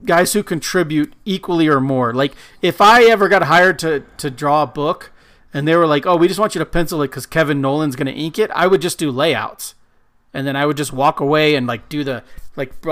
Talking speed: 245 wpm